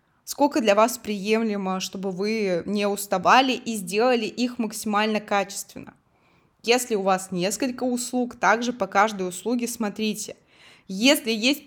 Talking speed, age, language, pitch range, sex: 130 wpm, 20-39, Russian, 190-235 Hz, female